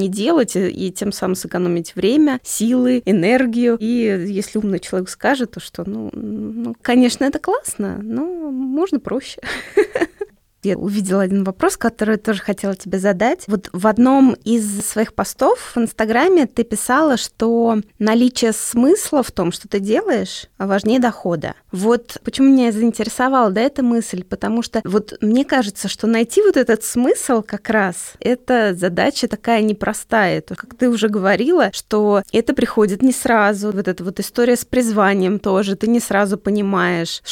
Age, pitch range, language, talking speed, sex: 20-39, 200-245 Hz, Russian, 155 wpm, female